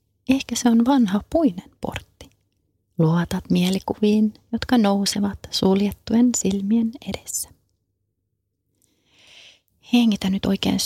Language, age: Finnish, 30-49